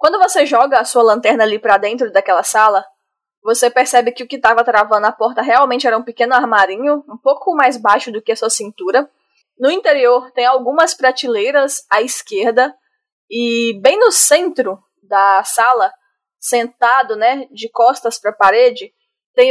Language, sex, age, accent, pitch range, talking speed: Portuguese, female, 10-29, Brazilian, 215-265 Hz, 170 wpm